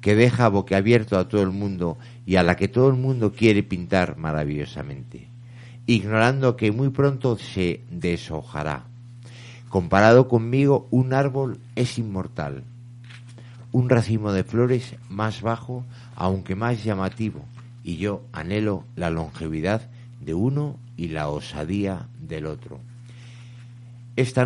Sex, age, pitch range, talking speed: male, 50-69, 95-120 Hz, 125 wpm